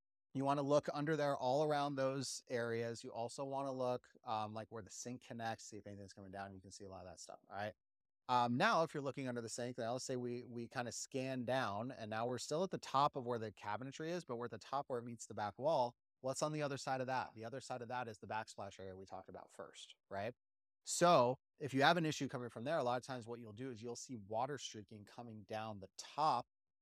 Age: 30-49